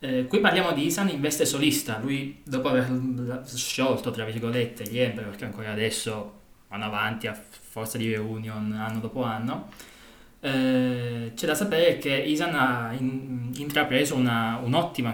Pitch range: 115-140 Hz